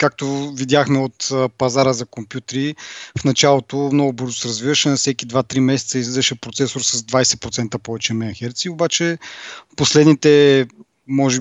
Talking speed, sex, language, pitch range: 130 wpm, male, Bulgarian, 120-145 Hz